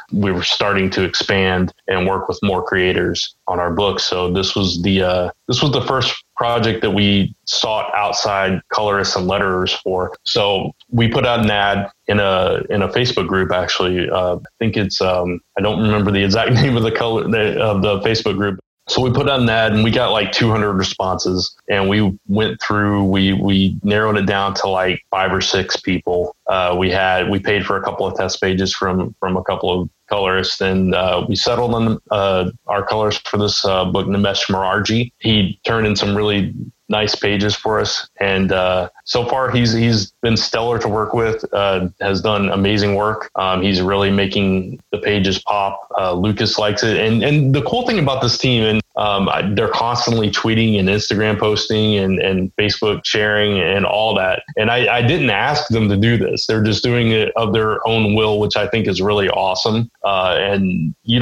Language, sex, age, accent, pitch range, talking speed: English, male, 20-39, American, 95-110 Hz, 205 wpm